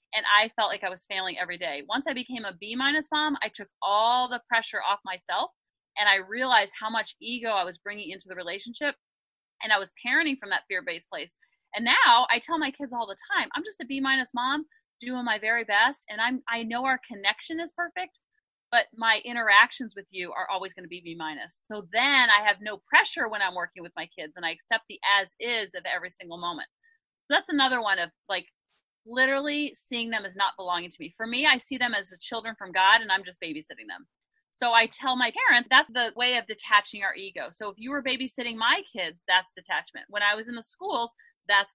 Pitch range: 200-260 Hz